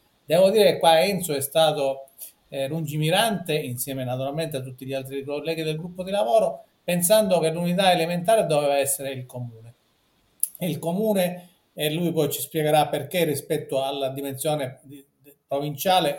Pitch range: 145-185 Hz